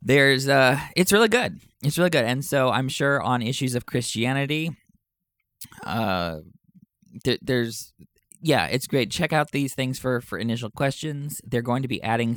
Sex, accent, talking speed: male, American, 175 wpm